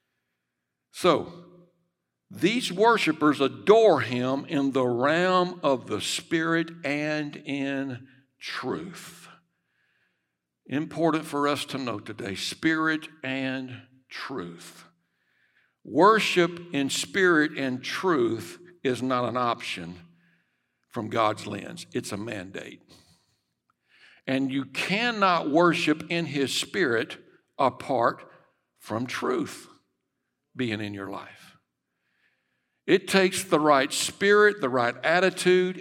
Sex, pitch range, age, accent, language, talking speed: male, 120-165 Hz, 60-79, American, English, 100 wpm